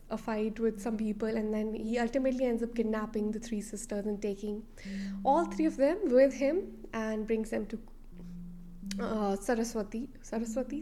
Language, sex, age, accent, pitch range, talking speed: English, female, 20-39, Indian, 200-235 Hz, 165 wpm